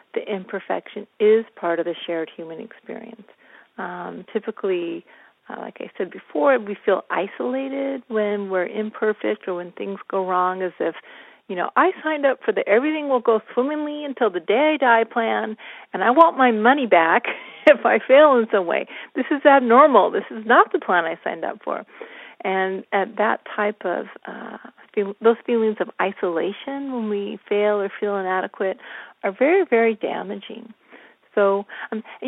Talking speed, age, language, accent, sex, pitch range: 175 wpm, 40-59, English, American, female, 190-250 Hz